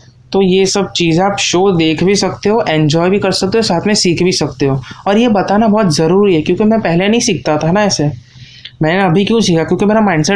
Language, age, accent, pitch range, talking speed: Hindi, 20-39, native, 130-180 Hz, 245 wpm